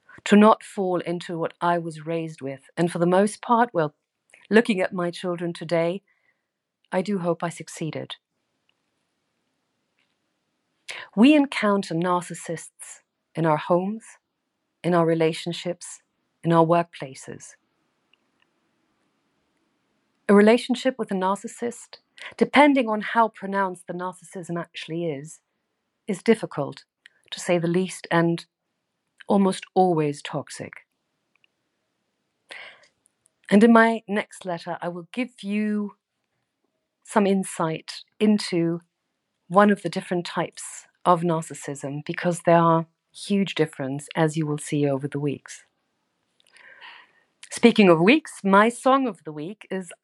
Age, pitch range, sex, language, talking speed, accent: 40-59, 165-205 Hz, female, English, 120 wpm, Irish